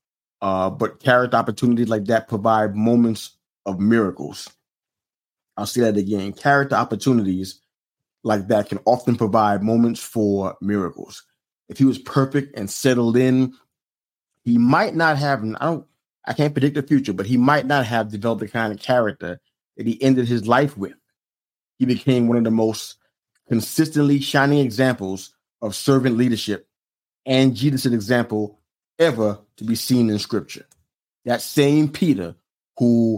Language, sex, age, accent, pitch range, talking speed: English, male, 30-49, American, 110-135 Hz, 150 wpm